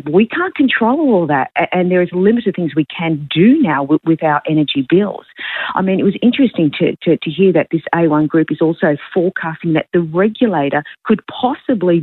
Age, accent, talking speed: 40-59, Australian, 195 wpm